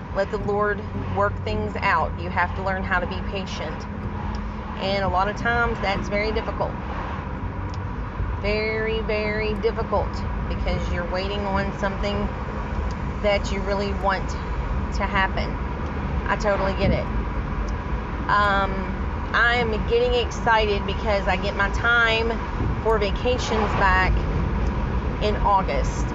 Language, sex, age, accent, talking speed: English, female, 30-49, American, 125 wpm